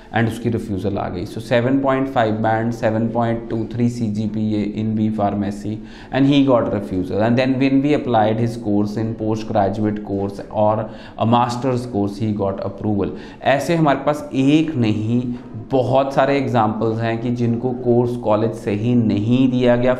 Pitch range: 105-120 Hz